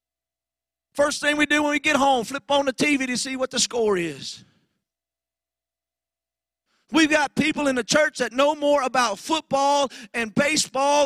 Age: 40-59